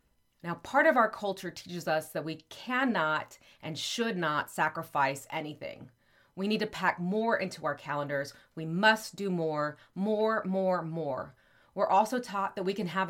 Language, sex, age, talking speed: English, female, 30-49, 170 wpm